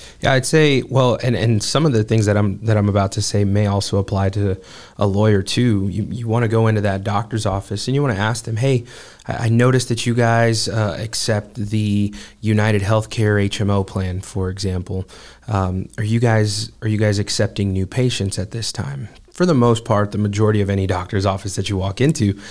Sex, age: male, 20-39